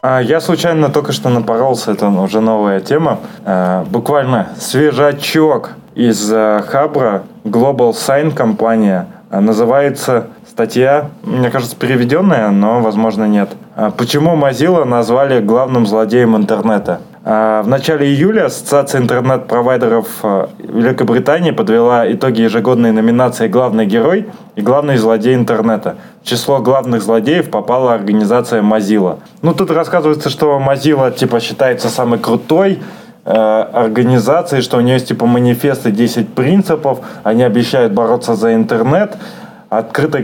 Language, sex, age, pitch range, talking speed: Russian, male, 20-39, 115-140 Hz, 115 wpm